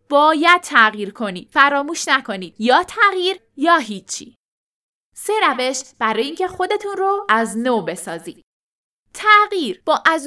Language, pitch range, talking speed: Persian, 220-335 Hz, 125 wpm